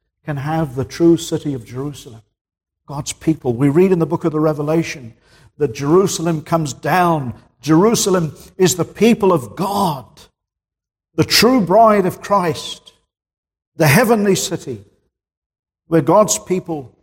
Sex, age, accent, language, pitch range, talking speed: male, 50-69, British, English, 115-155 Hz, 135 wpm